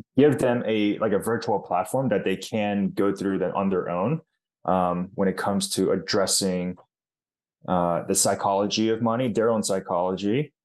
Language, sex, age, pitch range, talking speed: English, male, 20-39, 90-105 Hz, 170 wpm